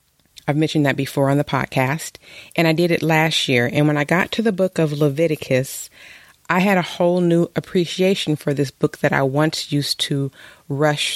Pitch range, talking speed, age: 140-165 Hz, 200 wpm, 30-49